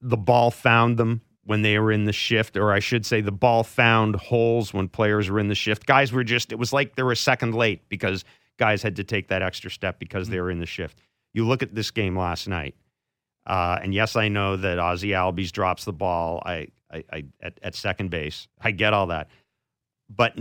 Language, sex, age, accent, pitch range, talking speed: English, male, 40-59, American, 95-120 Hz, 230 wpm